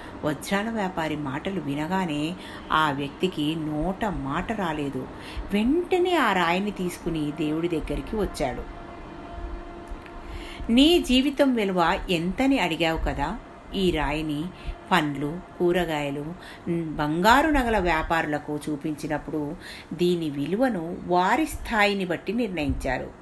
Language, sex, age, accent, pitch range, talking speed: Telugu, female, 50-69, native, 150-210 Hz, 90 wpm